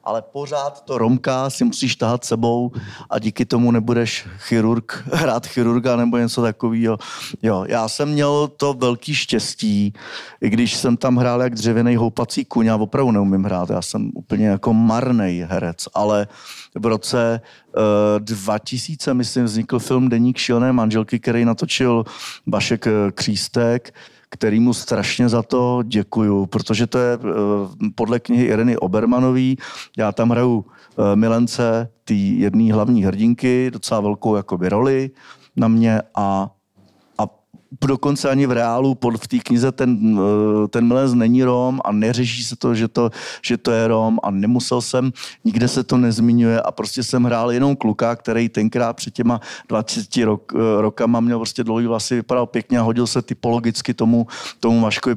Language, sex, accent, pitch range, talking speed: Czech, male, native, 110-125 Hz, 150 wpm